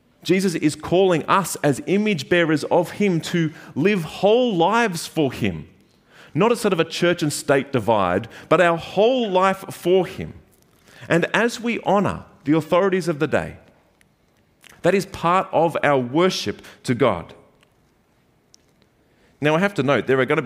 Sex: male